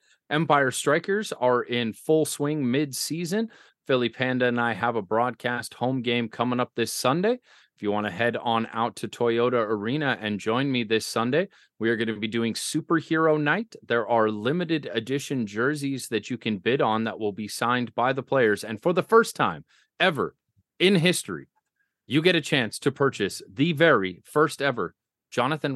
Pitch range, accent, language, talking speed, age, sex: 110-135 Hz, American, English, 185 wpm, 30-49, male